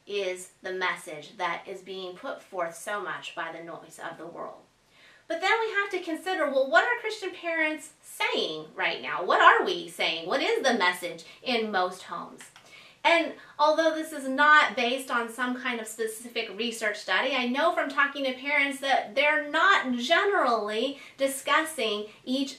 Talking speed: 175 wpm